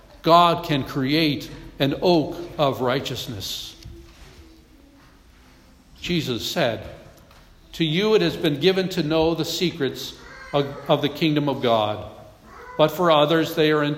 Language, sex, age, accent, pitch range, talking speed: English, male, 60-79, American, 120-165 Hz, 135 wpm